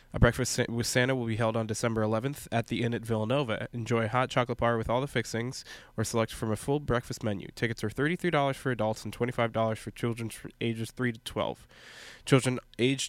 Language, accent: English, American